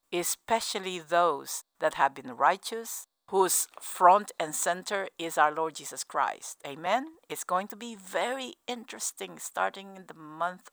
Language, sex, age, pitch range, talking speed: English, female, 50-69, 170-240 Hz, 145 wpm